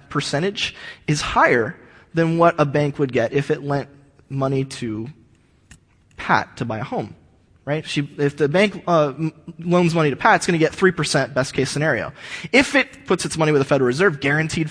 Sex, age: male, 20-39